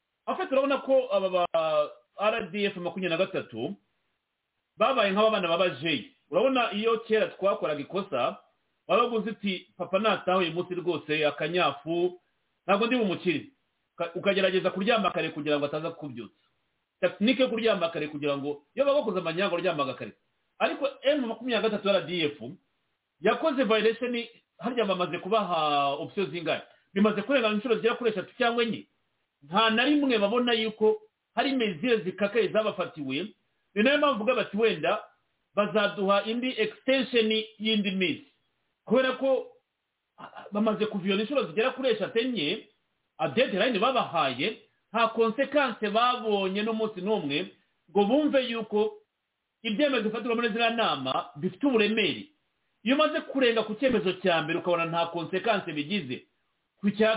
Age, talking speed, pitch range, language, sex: 40-59, 130 wpm, 180-235 Hz, English, male